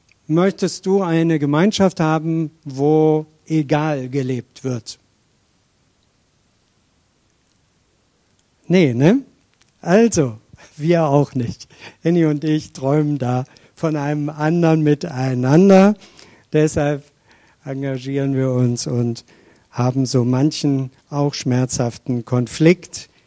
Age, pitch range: 60-79, 125-165 Hz